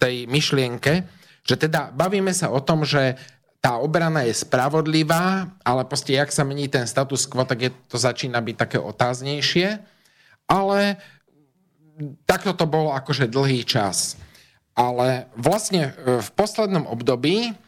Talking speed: 135 wpm